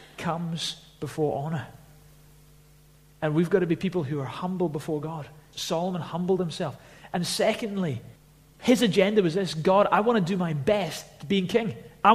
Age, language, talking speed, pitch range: 30-49, English, 165 wpm, 150-195 Hz